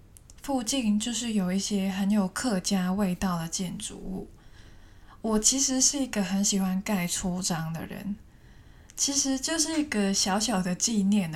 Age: 20-39